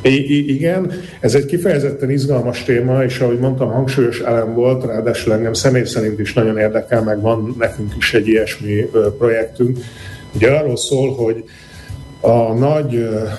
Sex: male